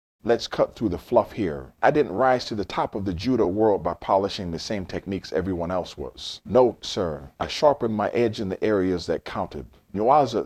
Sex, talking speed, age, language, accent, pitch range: male, 205 wpm, 40-59, English, American, 85-115 Hz